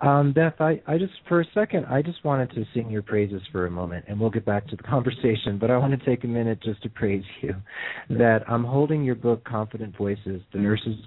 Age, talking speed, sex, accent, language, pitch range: 40-59, 245 wpm, male, American, English, 100-120 Hz